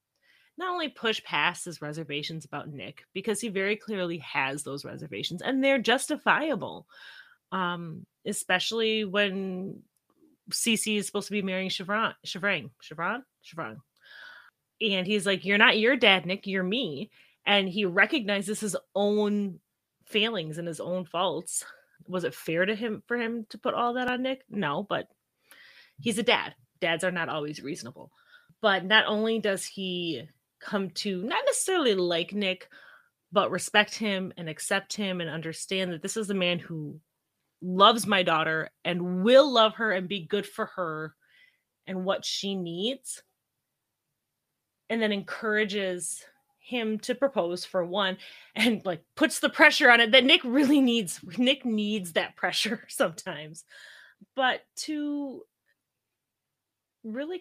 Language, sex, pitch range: English, female, 180-240 Hz